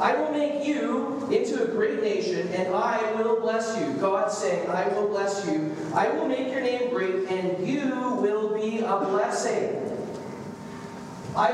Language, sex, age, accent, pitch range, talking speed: English, male, 40-59, American, 210-280 Hz, 165 wpm